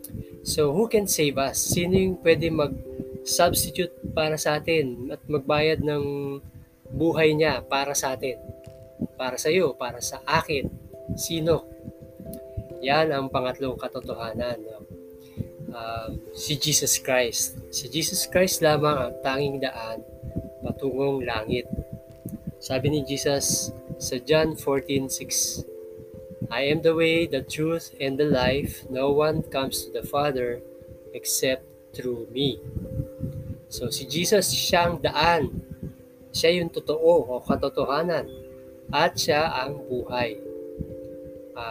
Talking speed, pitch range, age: 120 wpm, 120-155 Hz, 20-39